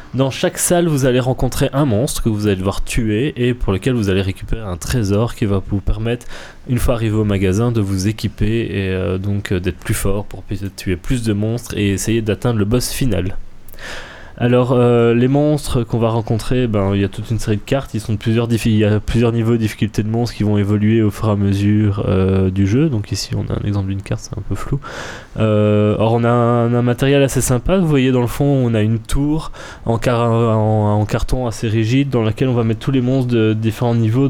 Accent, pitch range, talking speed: French, 105-130 Hz, 245 wpm